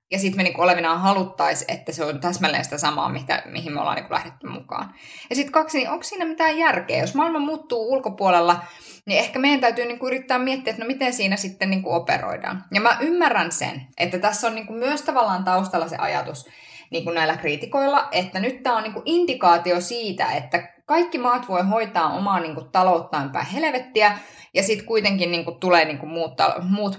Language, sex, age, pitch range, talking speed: Finnish, female, 20-39, 170-255 Hz, 190 wpm